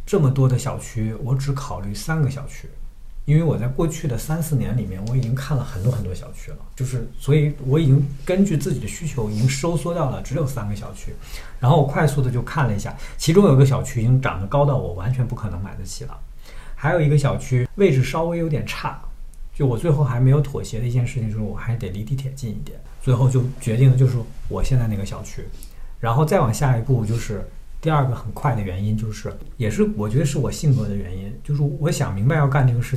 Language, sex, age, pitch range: Chinese, male, 50-69, 105-140 Hz